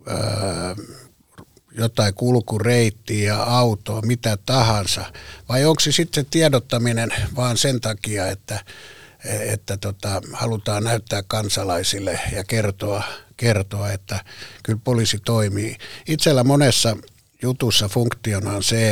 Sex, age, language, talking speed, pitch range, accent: male, 60-79, Finnish, 105 wpm, 100-115 Hz, native